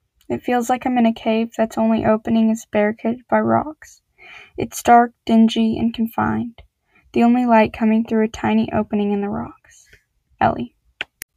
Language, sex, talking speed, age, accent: English, female, 165 wpm, 10-29, American